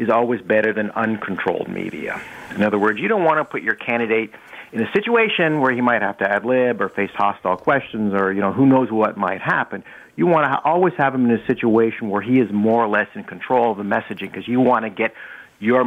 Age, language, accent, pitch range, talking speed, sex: 50-69, English, American, 105-130 Hz, 245 wpm, male